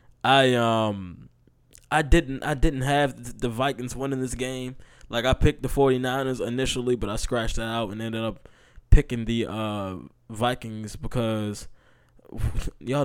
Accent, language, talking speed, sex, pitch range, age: American, English, 150 wpm, male, 105-135 Hz, 20-39